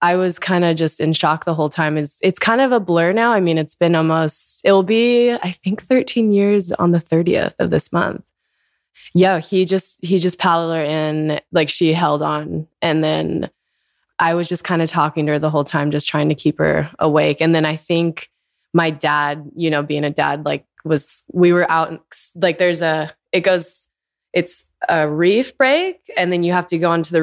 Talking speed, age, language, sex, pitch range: 215 wpm, 20-39, English, female, 155-175 Hz